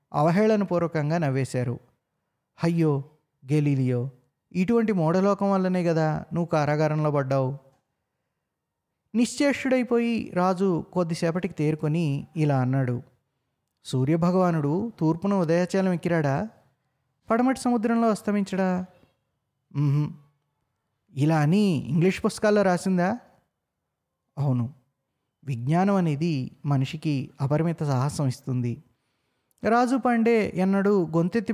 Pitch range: 140-195 Hz